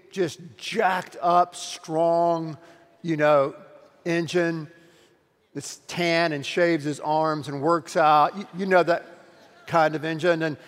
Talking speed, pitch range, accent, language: 135 wpm, 165-210 Hz, American, English